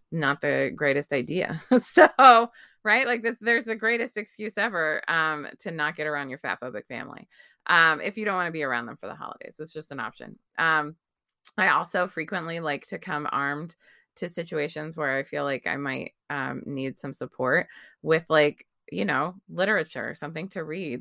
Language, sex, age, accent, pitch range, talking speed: English, female, 20-39, American, 145-190 Hz, 185 wpm